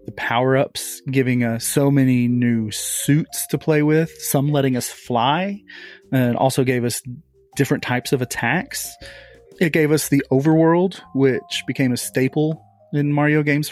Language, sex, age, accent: English, male, 30-49, American